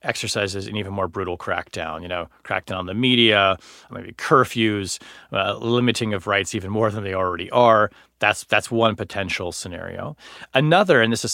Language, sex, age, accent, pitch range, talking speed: English, male, 30-49, American, 95-120 Hz, 175 wpm